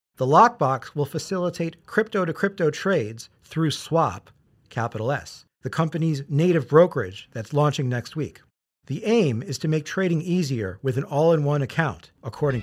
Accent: American